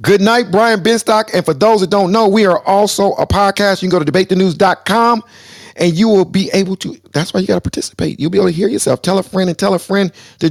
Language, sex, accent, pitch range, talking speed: English, male, American, 105-170 Hz, 255 wpm